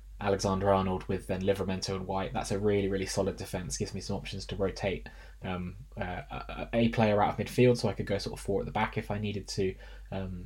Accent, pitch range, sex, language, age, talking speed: British, 95-110 Hz, male, English, 20-39, 235 wpm